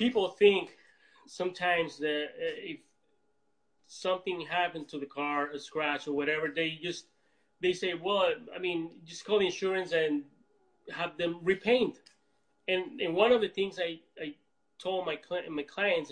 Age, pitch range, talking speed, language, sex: 30-49, 155-185 Hz, 155 wpm, English, male